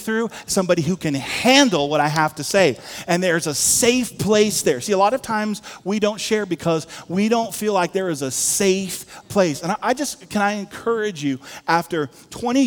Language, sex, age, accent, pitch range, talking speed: English, male, 40-59, American, 140-195 Hz, 205 wpm